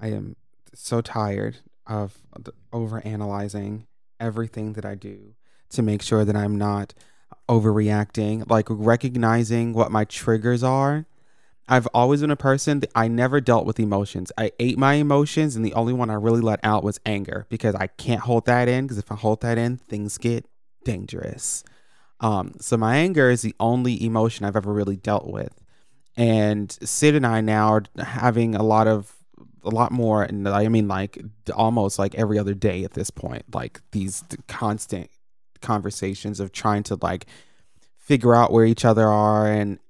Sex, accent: male, American